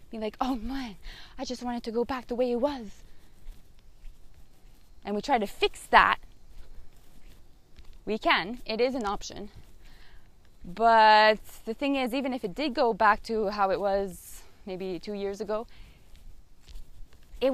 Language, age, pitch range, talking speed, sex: English, 20-39, 190-260 Hz, 155 wpm, female